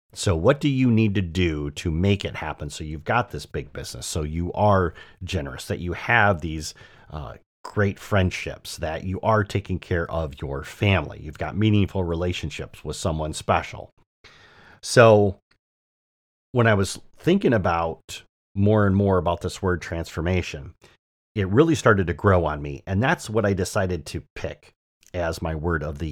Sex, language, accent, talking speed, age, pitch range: male, English, American, 170 wpm, 40-59, 80-105 Hz